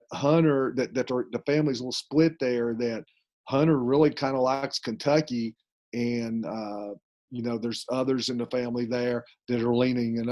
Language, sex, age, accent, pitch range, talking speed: English, male, 40-59, American, 125-150 Hz, 175 wpm